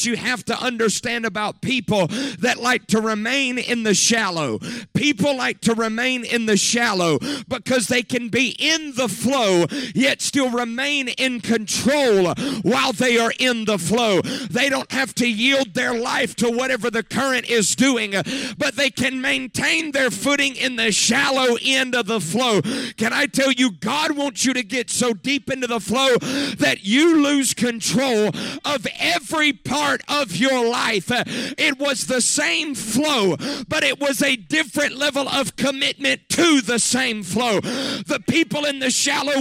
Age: 50-69